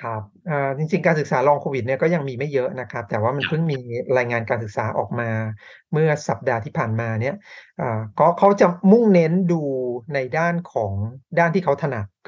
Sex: male